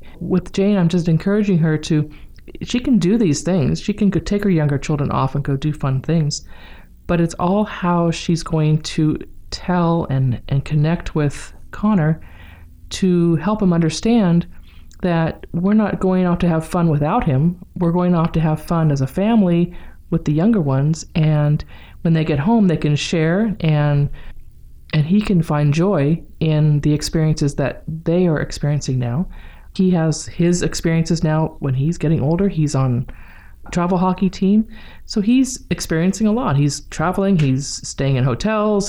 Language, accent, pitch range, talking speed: English, American, 150-185 Hz, 175 wpm